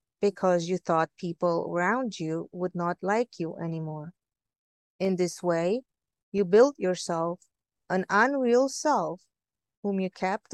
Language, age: English, 30-49